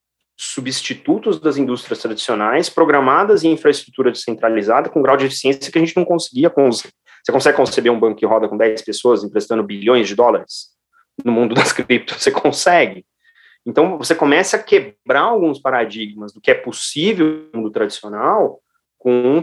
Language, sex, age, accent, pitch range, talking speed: Portuguese, male, 30-49, Brazilian, 115-160 Hz, 160 wpm